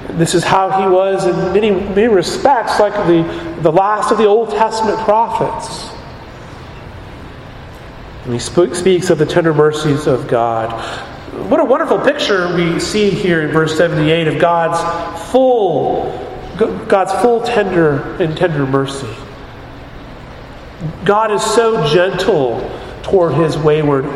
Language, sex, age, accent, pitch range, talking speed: English, male, 40-59, American, 140-205 Hz, 135 wpm